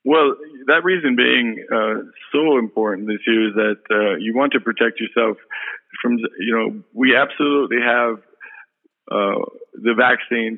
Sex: male